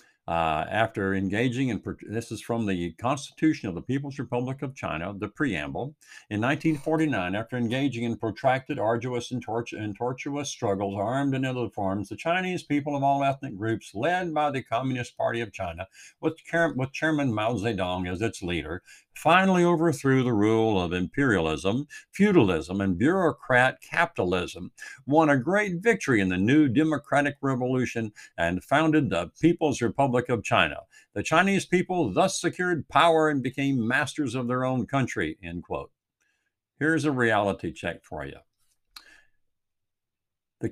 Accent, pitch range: American, 100-145 Hz